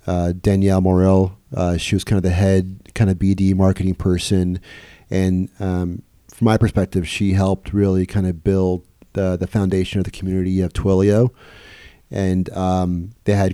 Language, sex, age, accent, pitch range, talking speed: English, male, 40-59, American, 90-105 Hz, 170 wpm